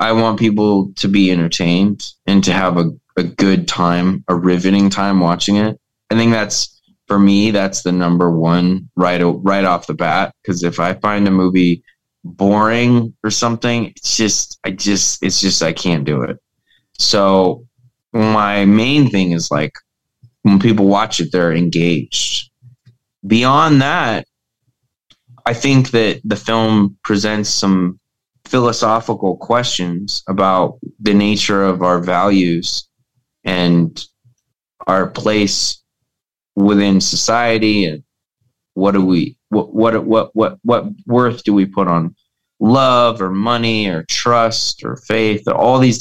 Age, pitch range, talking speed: 20-39, 90-115 Hz, 140 wpm